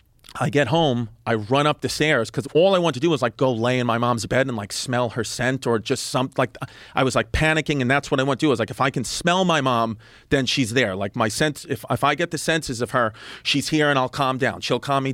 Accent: American